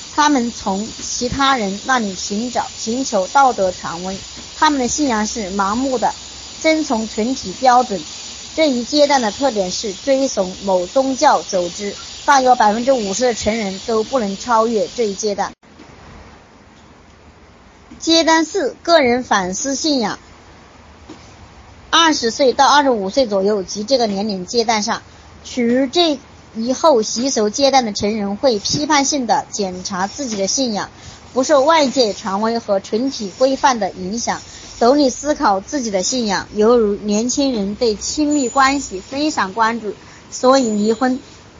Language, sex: Chinese, male